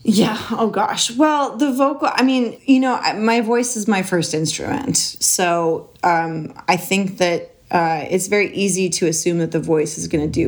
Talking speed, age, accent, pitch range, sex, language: 195 wpm, 30-49, American, 160-210 Hz, female, English